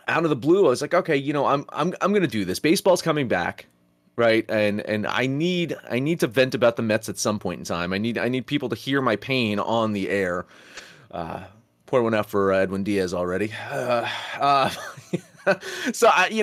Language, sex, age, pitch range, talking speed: English, male, 30-49, 105-140 Hz, 225 wpm